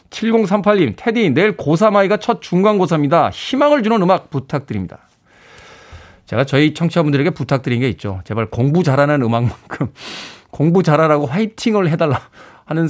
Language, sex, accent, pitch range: Korean, male, native, 130-190 Hz